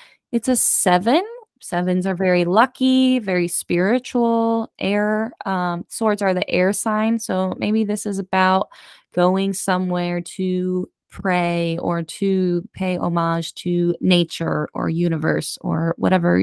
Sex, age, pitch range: female, 20-39, 175-210 Hz